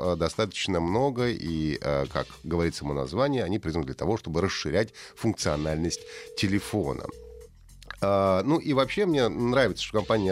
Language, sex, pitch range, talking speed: Russian, male, 85-125 Hz, 135 wpm